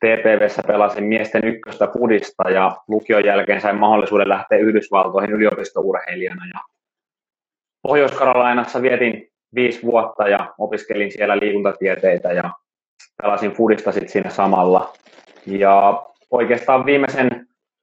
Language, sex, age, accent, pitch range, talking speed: Finnish, male, 30-49, native, 100-120 Hz, 100 wpm